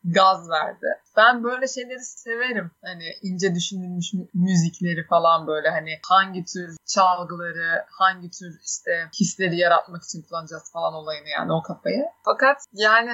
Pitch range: 180-240 Hz